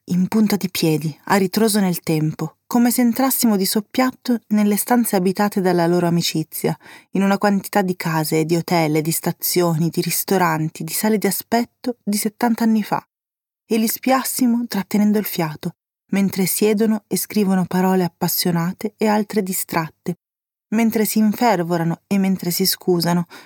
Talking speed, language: 155 wpm, Italian